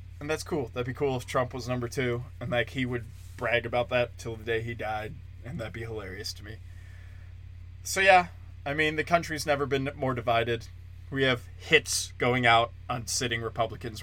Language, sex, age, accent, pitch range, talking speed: English, male, 20-39, American, 90-125 Hz, 200 wpm